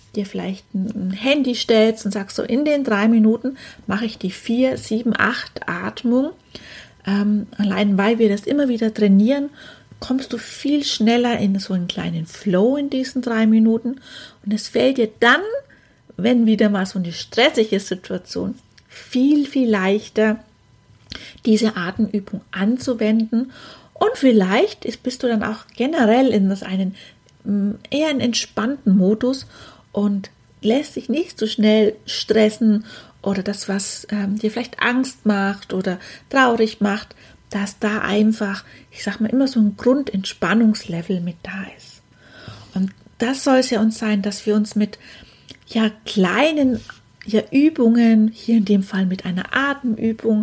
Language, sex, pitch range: German, female, 205-245 Hz